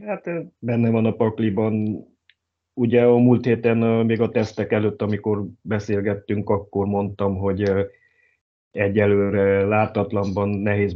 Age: 30-49